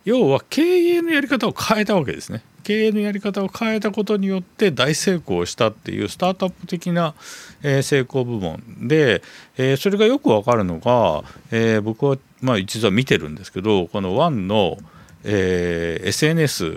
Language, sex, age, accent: Japanese, male, 50-69, native